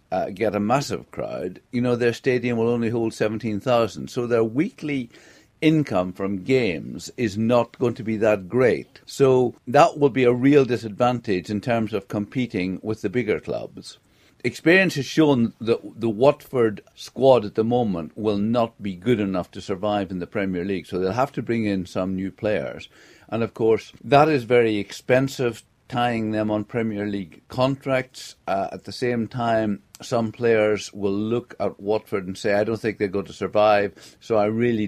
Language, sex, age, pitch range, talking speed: English, male, 50-69, 105-125 Hz, 185 wpm